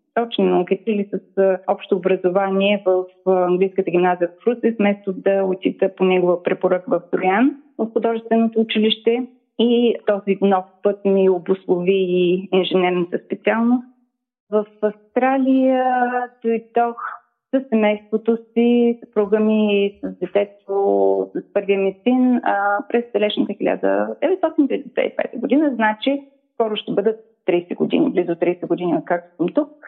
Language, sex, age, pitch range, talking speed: Bulgarian, female, 30-49, 190-230 Hz, 120 wpm